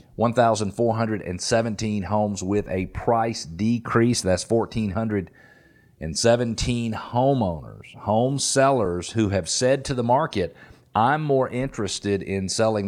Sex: male